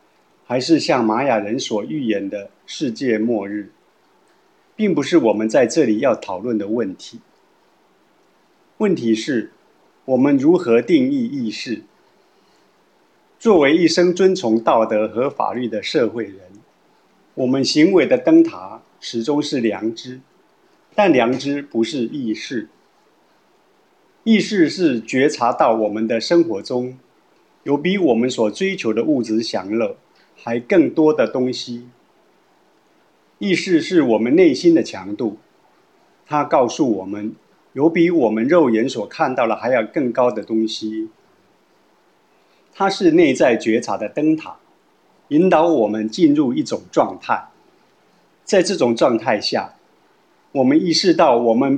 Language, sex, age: Chinese, male, 50-69